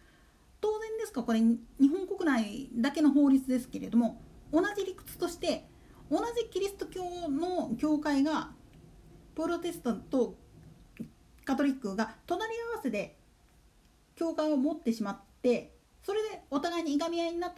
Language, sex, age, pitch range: Japanese, female, 40-59, 240-350 Hz